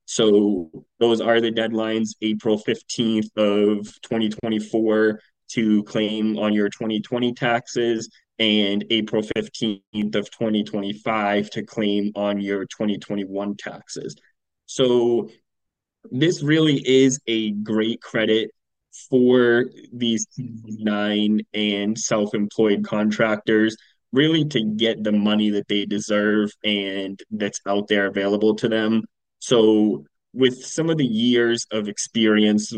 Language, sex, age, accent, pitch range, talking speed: English, male, 20-39, American, 105-115 Hz, 115 wpm